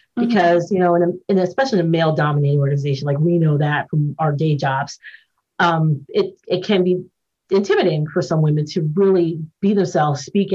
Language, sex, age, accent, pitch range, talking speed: English, female, 30-49, American, 155-185 Hz, 190 wpm